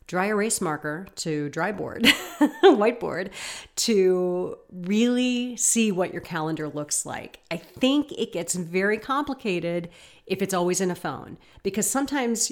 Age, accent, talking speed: 40-59, American, 140 wpm